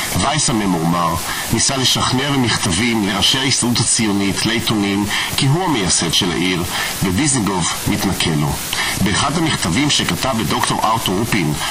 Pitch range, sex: 90-120 Hz, male